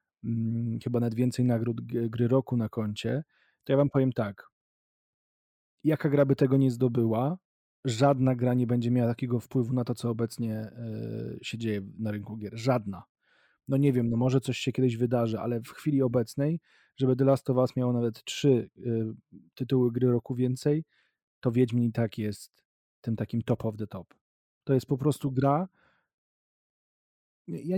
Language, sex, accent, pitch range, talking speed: Polish, male, native, 115-135 Hz, 175 wpm